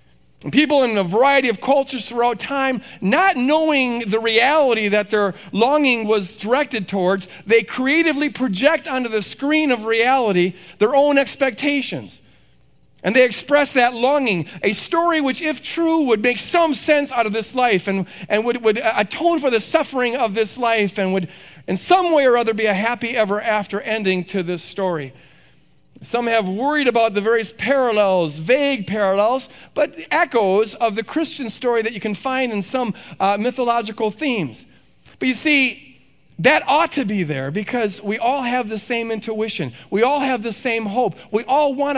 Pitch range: 205-265 Hz